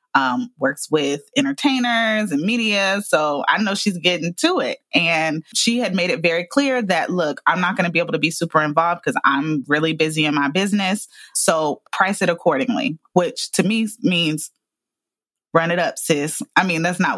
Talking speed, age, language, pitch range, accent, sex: 190 wpm, 20-39, English, 165-220 Hz, American, female